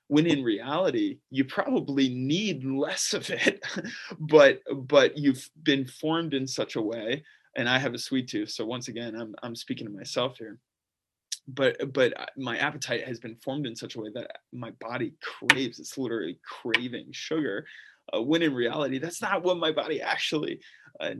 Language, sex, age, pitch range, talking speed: English, male, 20-39, 120-150 Hz, 180 wpm